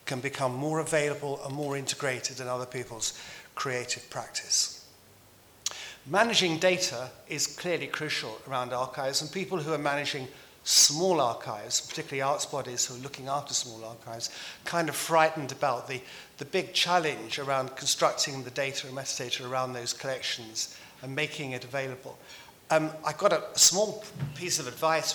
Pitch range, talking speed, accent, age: 125-155 Hz, 155 wpm, British, 50-69